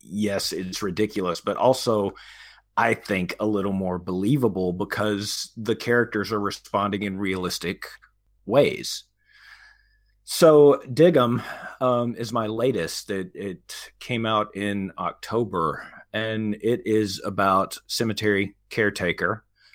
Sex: male